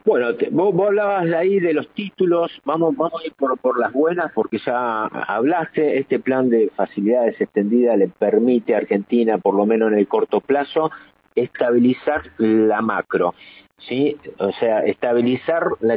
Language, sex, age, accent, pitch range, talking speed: Spanish, male, 50-69, Argentinian, 115-150 Hz, 160 wpm